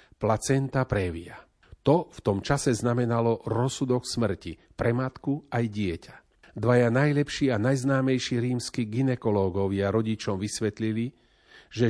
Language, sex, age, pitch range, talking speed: Slovak, male, 50-69, 105-130 Hz, 110 wpm